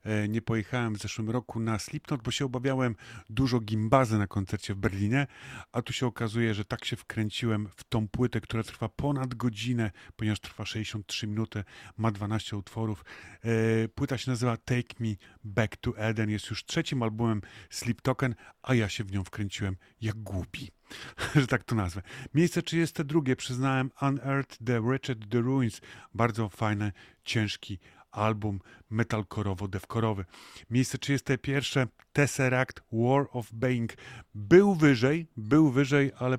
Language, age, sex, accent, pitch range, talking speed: Polish, 30-49, male, native, 105-130 Hz, 145 wpm